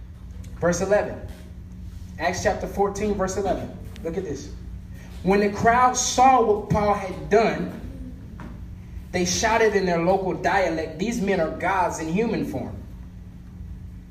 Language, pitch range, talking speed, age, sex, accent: English, 195-255 Hz, 130 wpm, 20-39, male, American